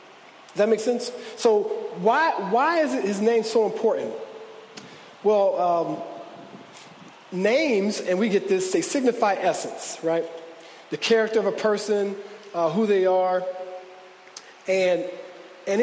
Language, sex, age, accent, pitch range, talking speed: English, male, 40-59, American, 185-235 Hz, 135 wpm